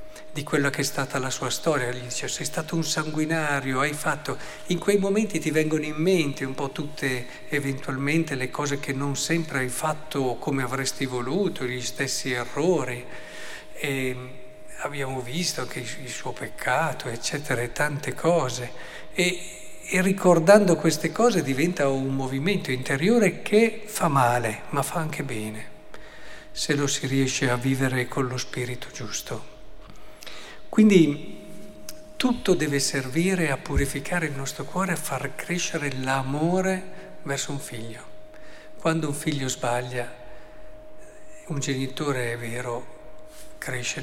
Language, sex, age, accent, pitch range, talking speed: Italian, male, 50-69, native, 130-165 Hz, 140 wpm